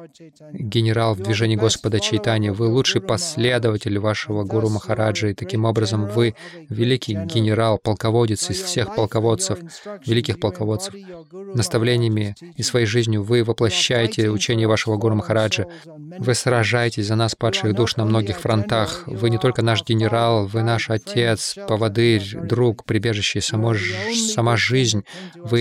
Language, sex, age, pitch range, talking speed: Russian, male, 20-39, 110-125 Hz, 130 wpm